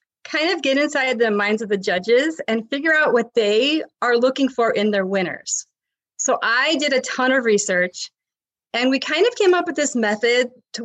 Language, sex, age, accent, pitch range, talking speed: English, female, 30-49, American, 225-275 Hz, 205 wpm